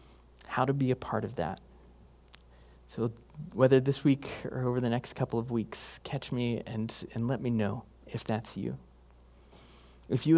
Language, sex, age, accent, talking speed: English, male, 30-49, American, 175 wpm